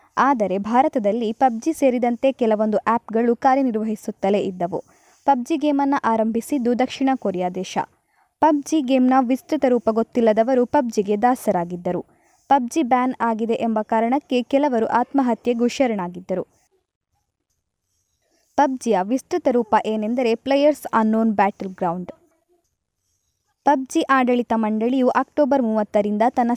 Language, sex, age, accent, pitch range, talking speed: Kannada, female, 20-39, native, 220-275 Hz, 100 wpm